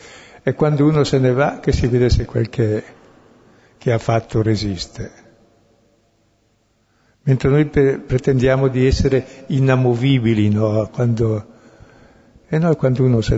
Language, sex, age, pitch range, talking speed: Italian, male, 60-79, 110-135 Hz, 125 wpm